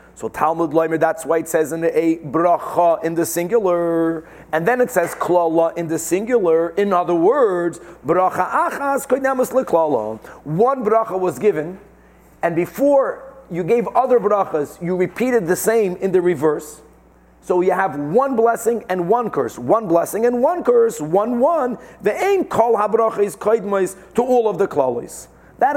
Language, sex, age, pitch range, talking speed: English, male, 40-59, 165-215 Hz, 165 wpm